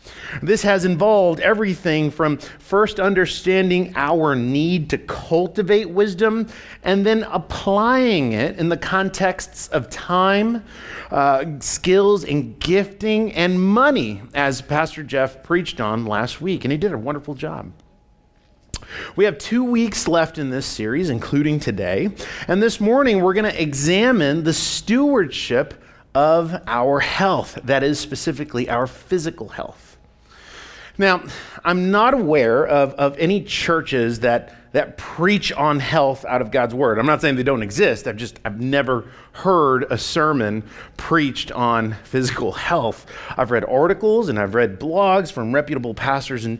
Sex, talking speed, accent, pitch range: male, 145 wpm, American, 140-195 Hz